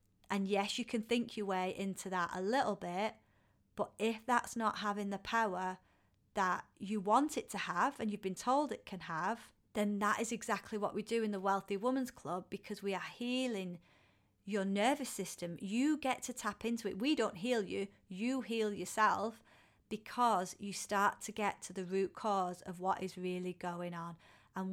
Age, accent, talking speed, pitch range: 30-49, British, 195 wpm, 185-220 Hz